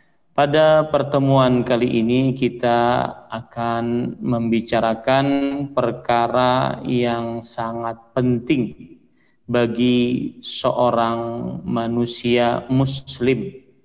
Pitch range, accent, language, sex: 115-130 Hz, native, Indonesian, male